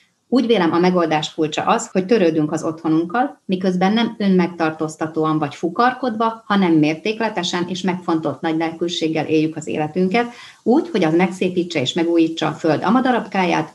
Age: 30-49